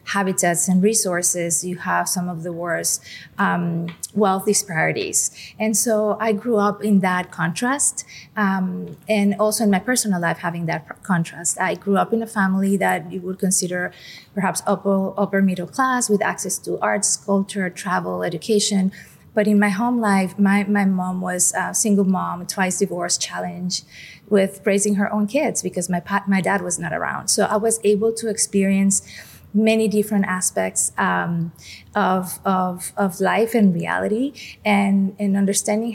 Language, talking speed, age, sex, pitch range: English, 165 wpm, 30-49, female, 180-205 Hz